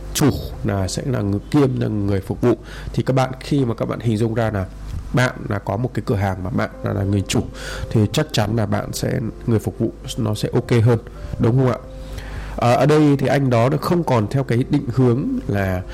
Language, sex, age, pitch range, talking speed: Vietnamese, male, 20-39, 100-130 Hz, 240 wpm